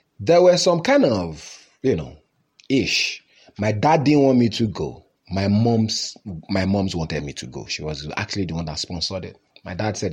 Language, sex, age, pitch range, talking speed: English, male, 30-49, 90-130 Hz, 200 wpm